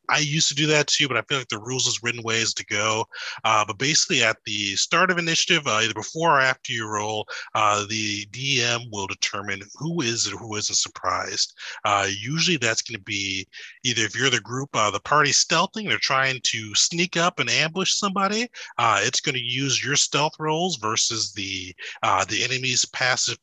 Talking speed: 205 wpm